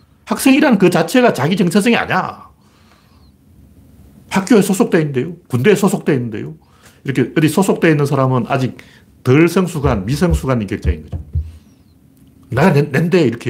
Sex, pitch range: male, 95-160 Hz